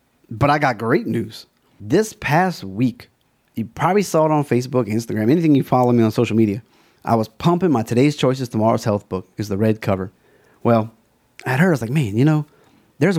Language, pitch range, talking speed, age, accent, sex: English, 115-145 Hz, 205 wpm, 30-49, American, male